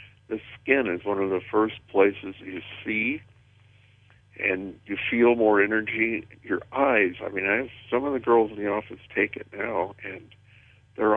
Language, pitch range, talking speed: English, 100-115 Hz, 165 wpm